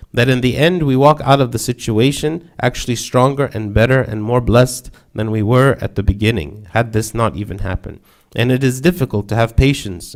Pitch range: 110-135 Hz